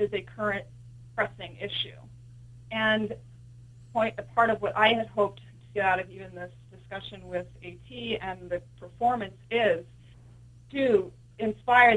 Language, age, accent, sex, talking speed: English, 30-49, American, female, 145 wpm